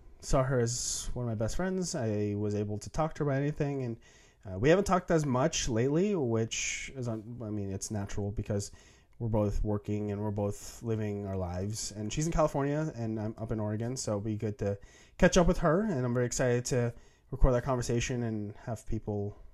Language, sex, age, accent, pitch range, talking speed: English, male, 20-39, American, 105-140 Hz, 215 wpm